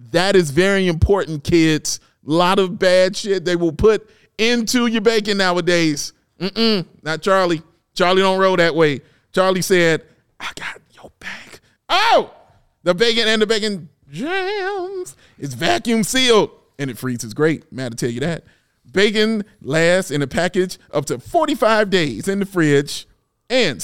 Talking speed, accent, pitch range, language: 160 wpm, American, 155-235 Hz, English